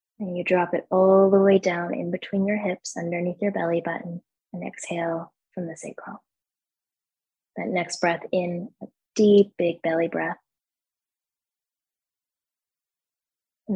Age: 20-39